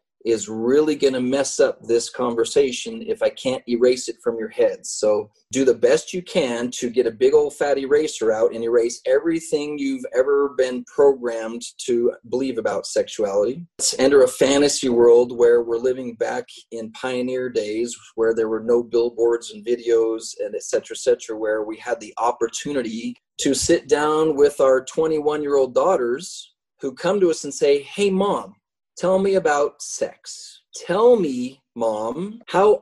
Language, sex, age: English, male, 30-49